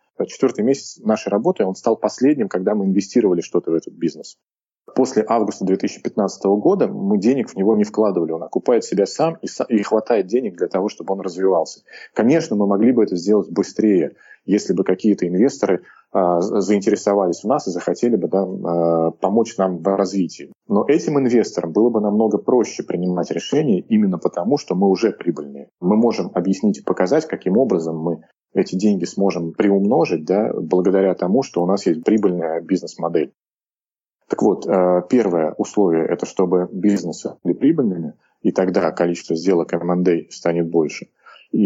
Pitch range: 85-100 Hz